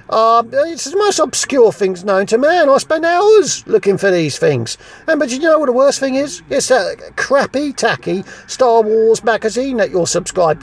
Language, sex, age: English, male, 40-59